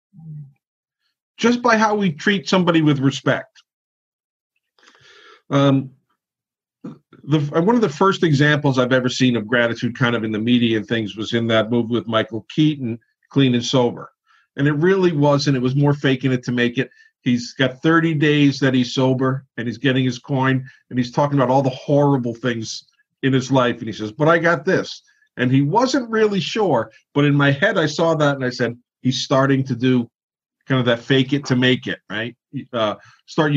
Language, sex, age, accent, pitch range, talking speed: English, male, 50-69, American, 120-155 Hz, 195 wpm